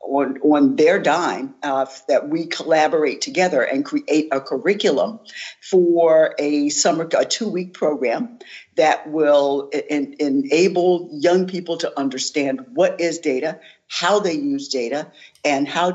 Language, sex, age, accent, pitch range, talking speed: English, female, 60-79, American, 140-185 Hz, 135 wpm